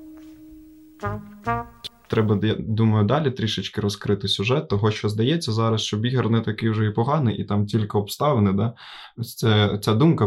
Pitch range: 105-120 Hz